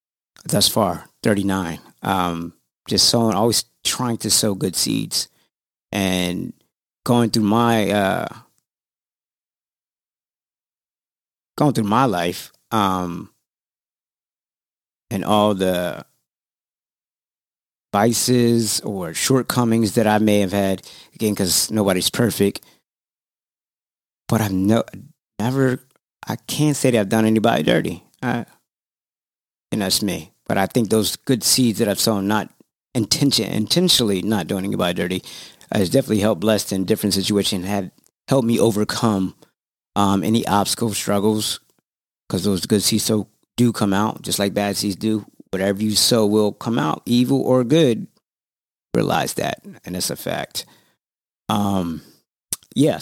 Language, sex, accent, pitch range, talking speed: English, male, American, 95-115 Hz, 125 wpm